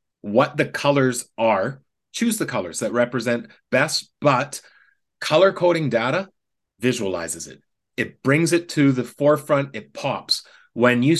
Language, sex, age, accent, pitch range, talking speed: English, male, 30-49, American, 120-150 Hz, 140 wpm